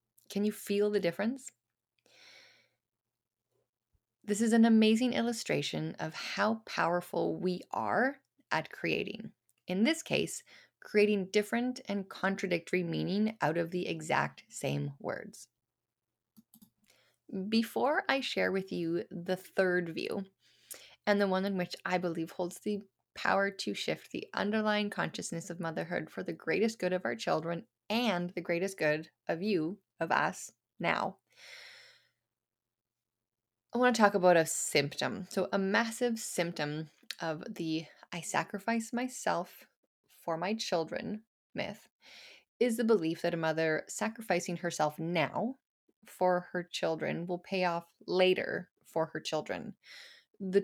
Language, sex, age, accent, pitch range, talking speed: English, female, 10-29, American, 170-220 Hz, 135 wpm